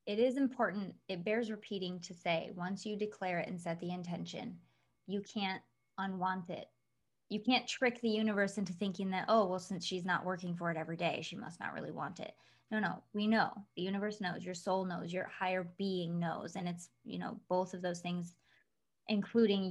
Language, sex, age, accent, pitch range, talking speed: English, female, 20-39, American, 180-210 Hz, 205 wpm